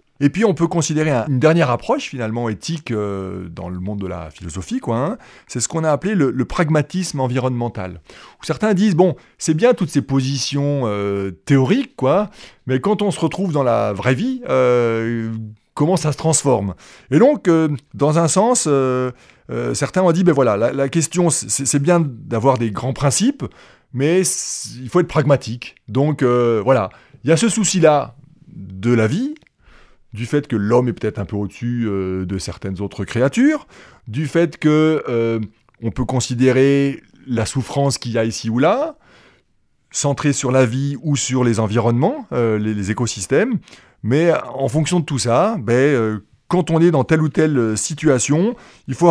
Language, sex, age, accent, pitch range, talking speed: French, male, 30-49, French, 115-160 Hz, 185 wpm